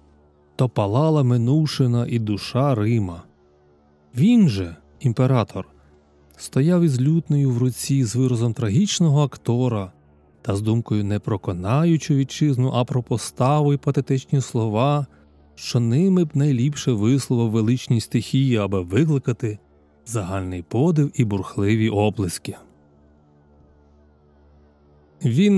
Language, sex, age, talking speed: Ukrainian, male, 30-49, 110 wpm